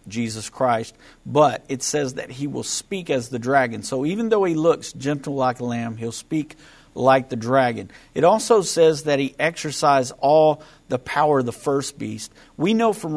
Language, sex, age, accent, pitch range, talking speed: English, male, 50-69, American, 120-145 Hz, 190 wpm